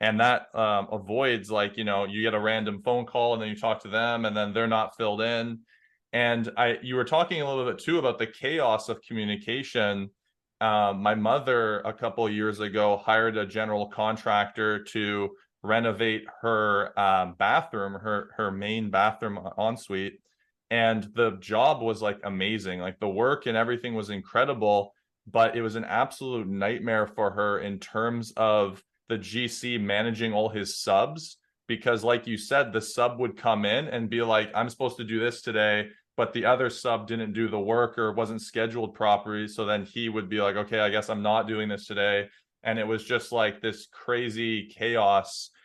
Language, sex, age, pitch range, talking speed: English, male, 20-39, 105-115 Hz, 190 wpm